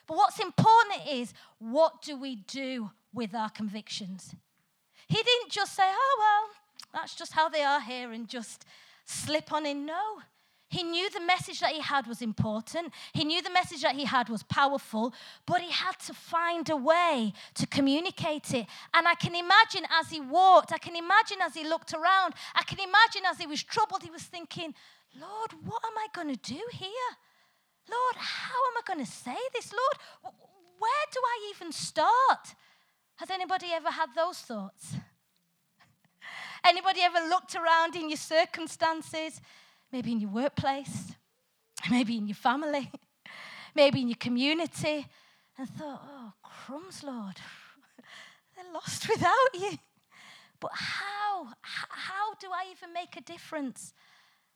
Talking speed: 160 wpm